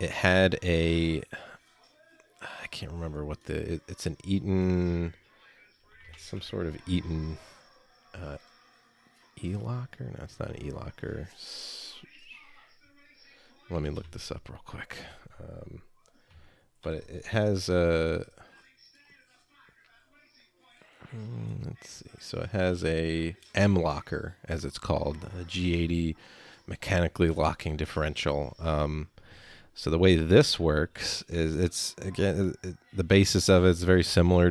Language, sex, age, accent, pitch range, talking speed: English, male, 30-49, American, 80-95 Hz, 115 wpm